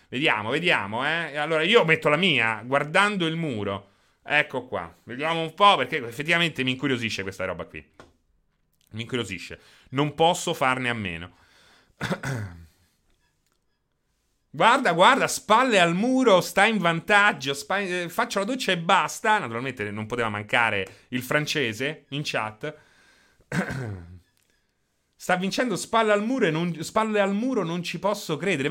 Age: 30-49